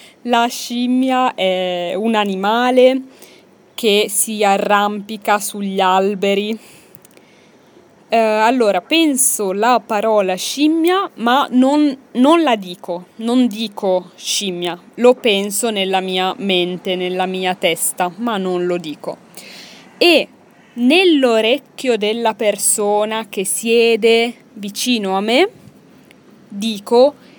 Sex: female